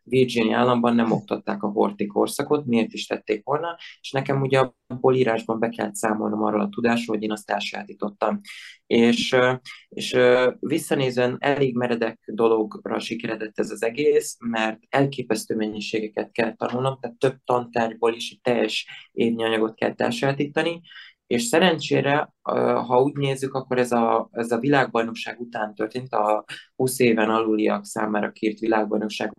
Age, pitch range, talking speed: 20-39, 115-130 Hz, 140 wpm